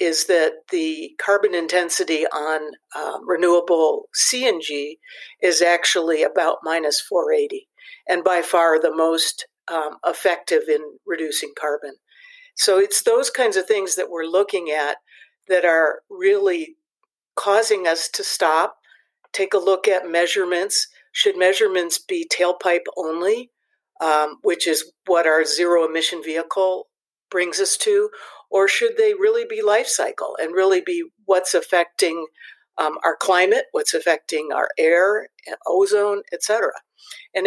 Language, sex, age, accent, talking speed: English, female, 60-79, American, 140 wpm